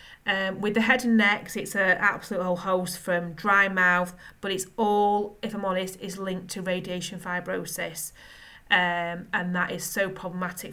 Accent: British